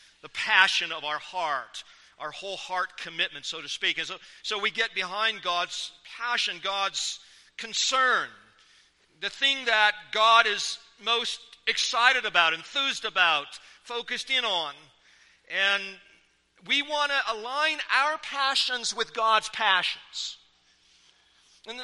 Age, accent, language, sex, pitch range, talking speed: 50-69, American, English, male, 185-250 Hz, 125 wpm